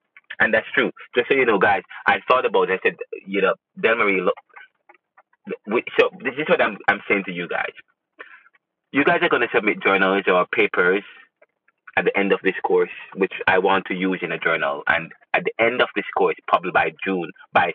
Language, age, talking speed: English, 20-39, 215 wpm